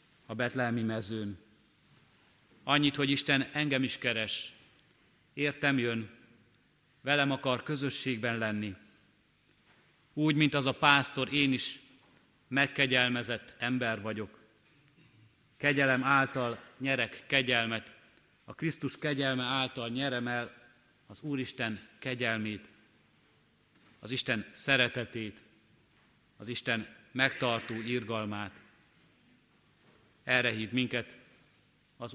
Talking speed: 95 wpm